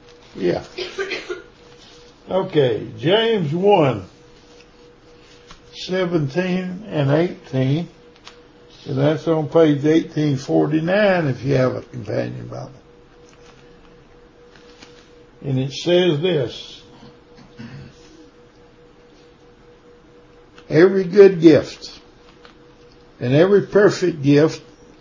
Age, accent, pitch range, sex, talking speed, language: 60-79, American, 135-175 Hz, male, 70 wpm, English